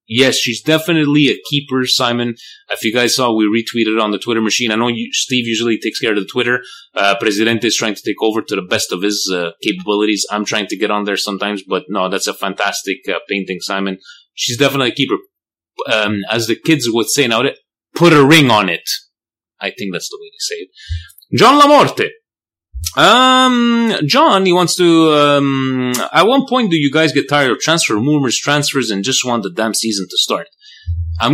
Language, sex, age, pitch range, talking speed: Italian, male, 30-49, 110-160 Hz, 205 wpm